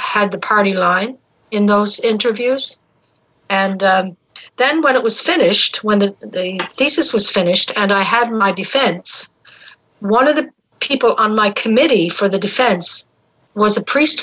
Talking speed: 160 wpm